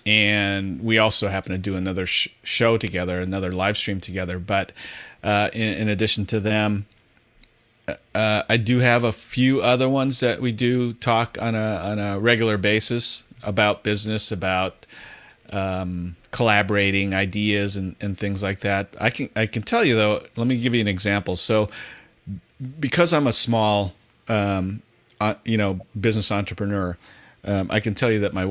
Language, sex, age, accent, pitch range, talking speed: English, male, 40-59, American, 95-110 Hz, 170 wpm